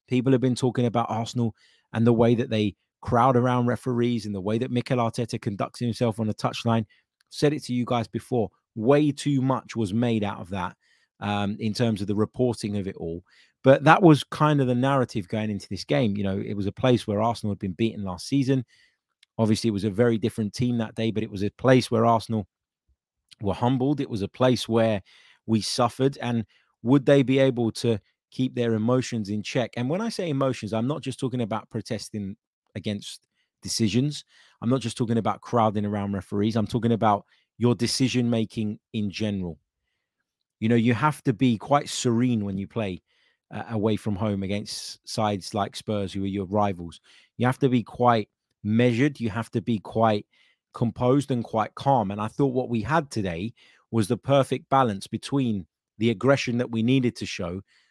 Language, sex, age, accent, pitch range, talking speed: English, male, 20-39, British, 105-125 Hz, 200 wpm